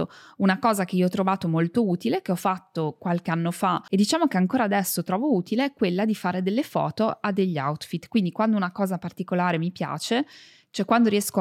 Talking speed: 210 wpm